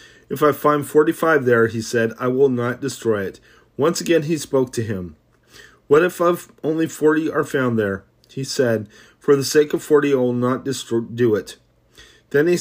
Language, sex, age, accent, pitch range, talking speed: English, male, 30-49, American, 115-150 Hz, 190 wpm